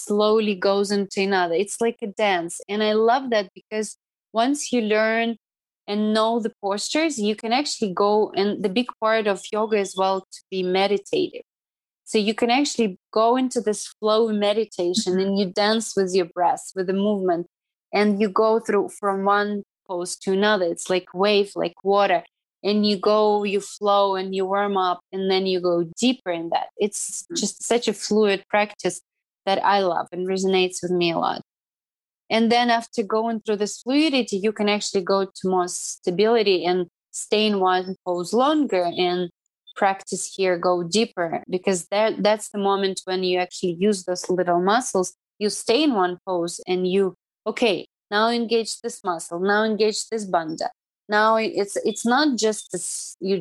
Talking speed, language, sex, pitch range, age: 180 wpm, English, female, 185-220 Hz, 20-39